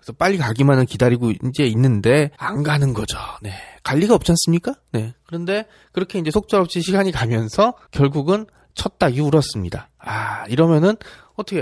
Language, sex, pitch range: Korean, male, 115-170 Hz